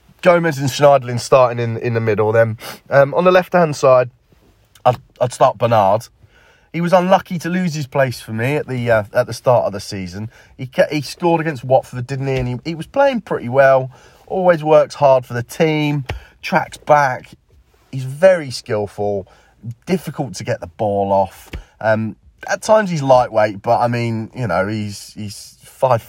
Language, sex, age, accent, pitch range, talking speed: English, male, 30-49, British, 105-145 Hz, 185 wpm